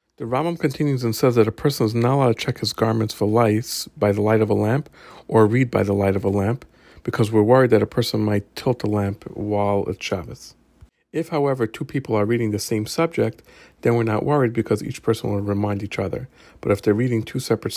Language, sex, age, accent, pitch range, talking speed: English, male, 50-69, American, 105-120 Hz, 235 wpm